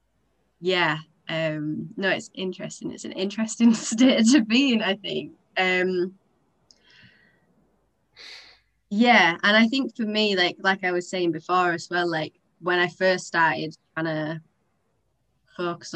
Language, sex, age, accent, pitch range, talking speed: English, female, 20-39, British, 170-205 Hz, 135 wpm